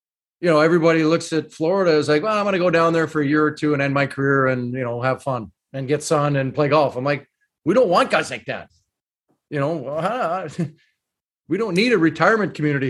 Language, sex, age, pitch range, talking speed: English, male, 30-49, 140-165 Hz, 240 wpm